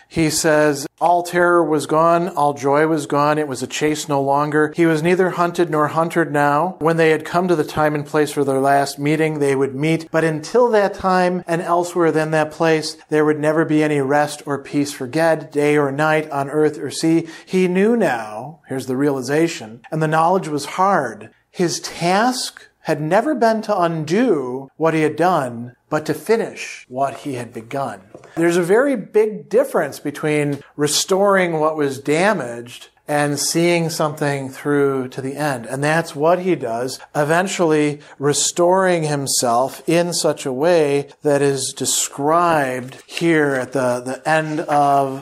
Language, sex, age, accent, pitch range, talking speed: English, male, 40-59, American, 140-170 Hz, 175 wpm